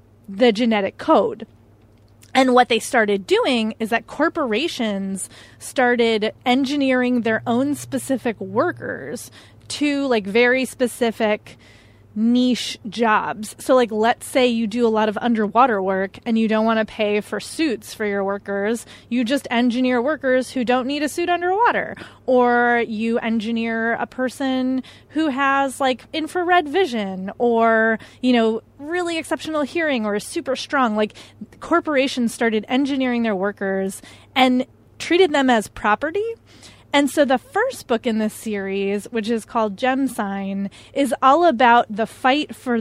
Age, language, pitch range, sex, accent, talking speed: 20-39, English, 215-260 Hz, female, American, 145 wpm